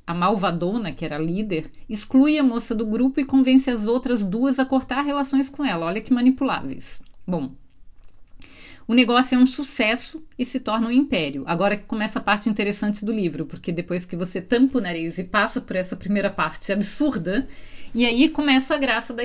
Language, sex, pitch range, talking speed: Portuguese, female, 195-265 Hz, 195 wpm